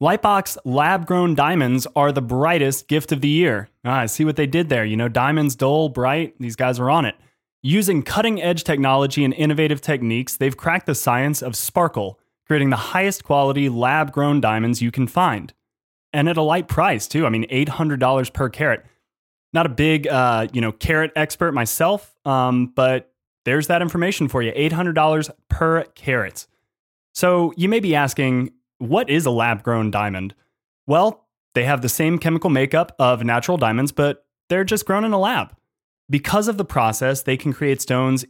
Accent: American